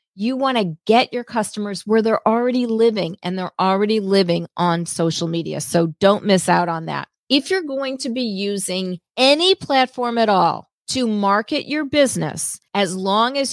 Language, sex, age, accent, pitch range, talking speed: English, female, 40-59, American, 185-240 Hz, 180 wpm